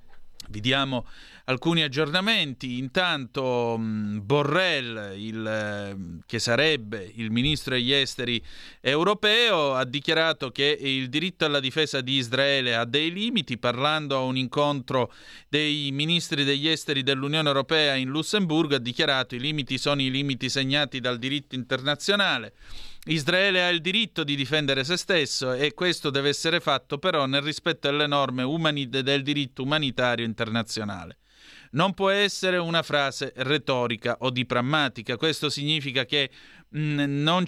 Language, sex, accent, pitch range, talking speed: Italian, male, native, 130-155 Hz, 135 wpm